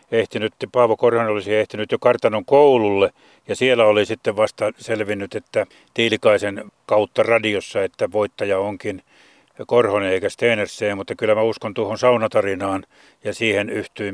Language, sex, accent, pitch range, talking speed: Finnish, male, native, 105-125 Hz, 140 wpm